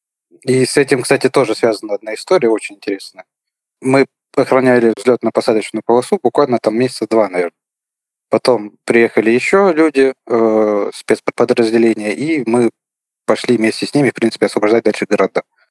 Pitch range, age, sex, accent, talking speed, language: 110-145 Hz, 20-39, male, native, 140 wpm, Russian